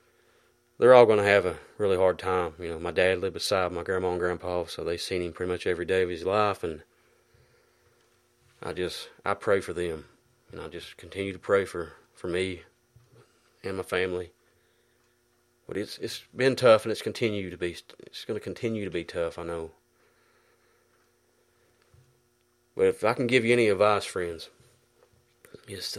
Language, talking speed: English, 180 wpm